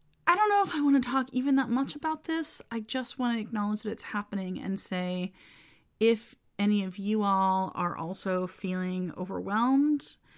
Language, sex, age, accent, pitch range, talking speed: English, female, 30-49, American, 175-255 Hz, 185 wpm